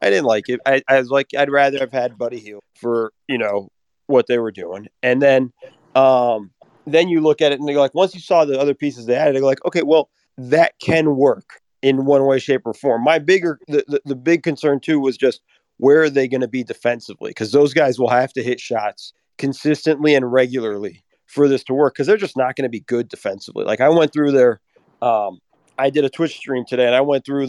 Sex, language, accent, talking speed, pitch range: male, English, American, 240 wpm, 125-150 Hz